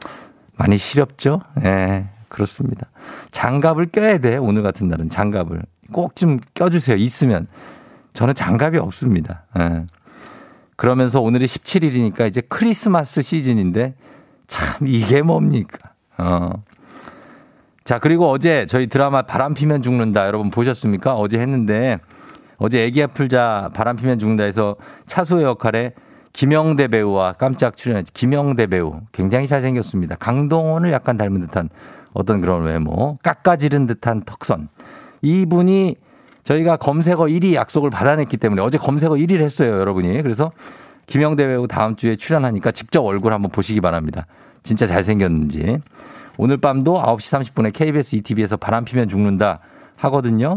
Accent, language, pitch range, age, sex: native, Korean, 105-150 Hz, 50-69, male